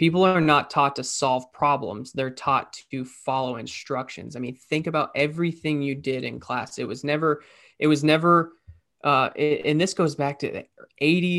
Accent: American